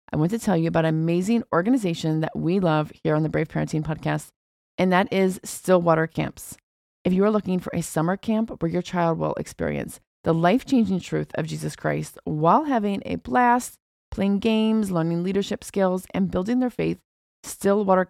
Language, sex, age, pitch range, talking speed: English, female, 30-49, 160-205 Hz, 190 wpm